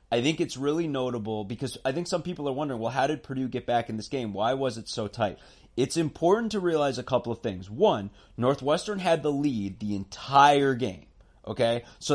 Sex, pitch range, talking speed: male, 125-170 Hz, 215 wpm